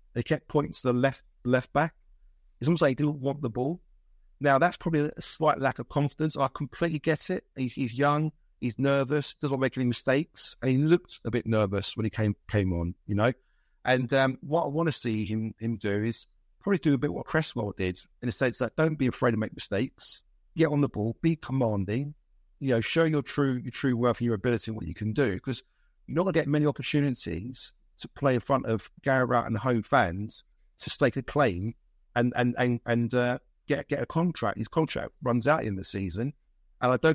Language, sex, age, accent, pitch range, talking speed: English, male, 50-69, British, 115-145 Hz, 230 wpm